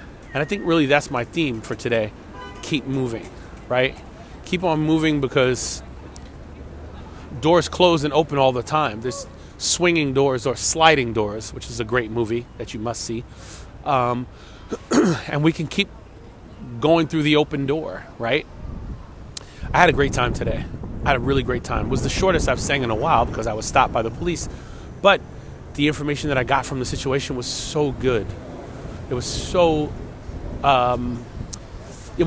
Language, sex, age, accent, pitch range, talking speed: English, male, 30-49, American, 115-150 Hz, 175 wpm